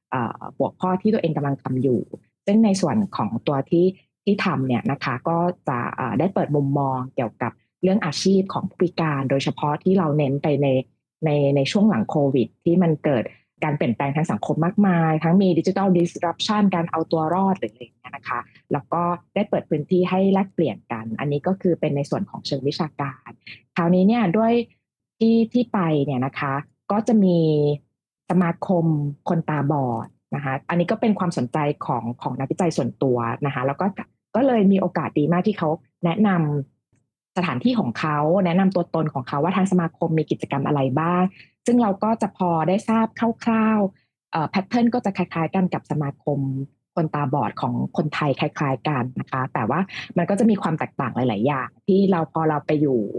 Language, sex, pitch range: Thai, female, 140-190 Hz